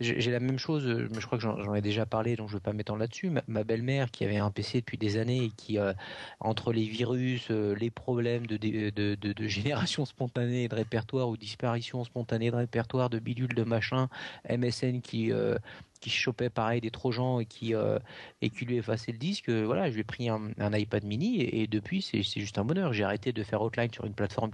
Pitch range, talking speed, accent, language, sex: 110-135 Hz, 240 wpm, French, French, male